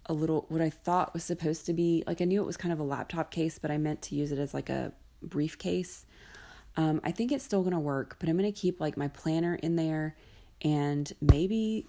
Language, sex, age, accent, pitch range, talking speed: English, female, 30-49, American, 140-175 Hz, 235 wpm